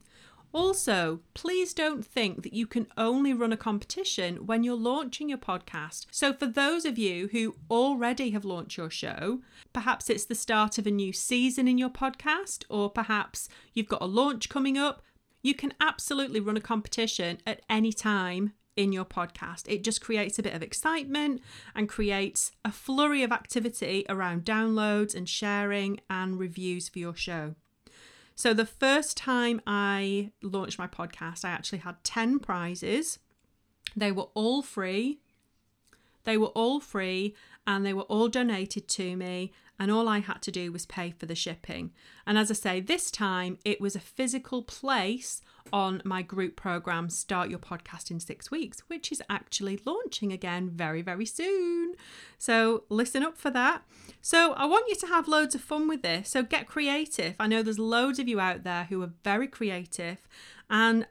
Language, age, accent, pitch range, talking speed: English, 30-49, British, 195-265 Hz, 175 wpm